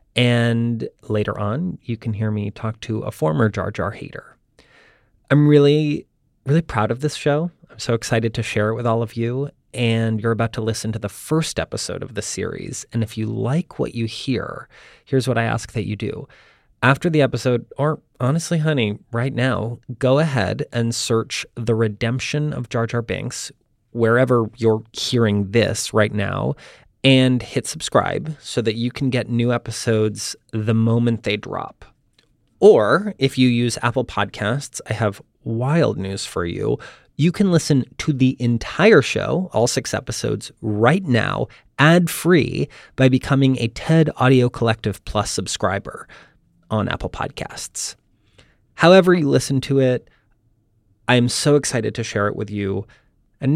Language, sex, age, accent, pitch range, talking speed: English, male, 30-49, American, 110-135 Hz, 165 wpm